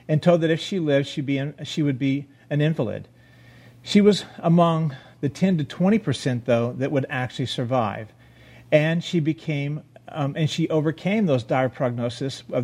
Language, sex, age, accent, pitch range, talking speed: English, male, 40-59, American, 130-165 Hz, 180 wpm